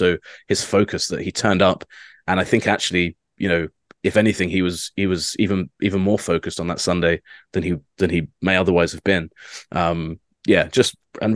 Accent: British